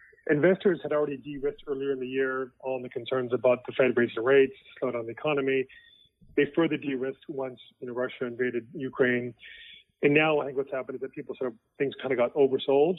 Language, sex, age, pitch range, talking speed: English, male, 30-49, 125-150 Hz, 215 wpm